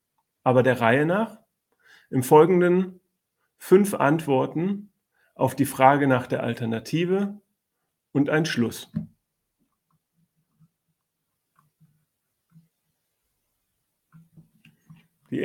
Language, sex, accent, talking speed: German, male, German, 70 wpm